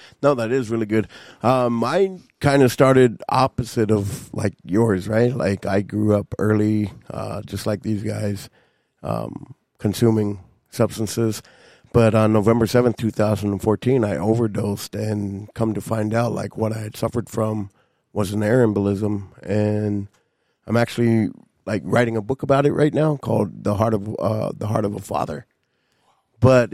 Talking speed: 170 wpm